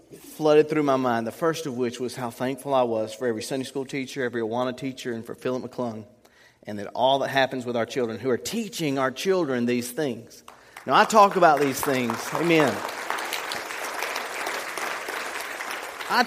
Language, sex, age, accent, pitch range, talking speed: English, male, 40-59, American, 130-170 Hz, 175 wpm